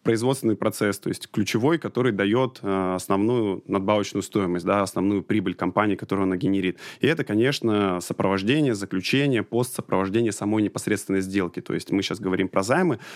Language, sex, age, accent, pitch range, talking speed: Russian, male, 20-39, native, 95-115 Hz, 150 wpm